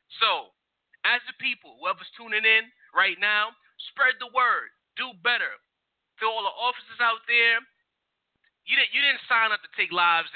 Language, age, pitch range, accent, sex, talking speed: English, 30-49, 200-245 Hz, American, male, 160 wpm